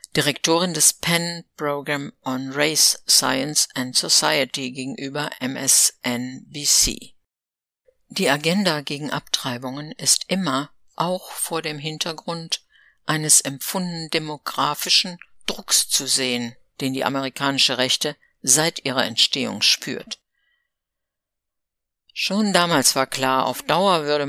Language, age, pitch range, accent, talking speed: German, 60-79, 135-165 Hz, German, 105 wpm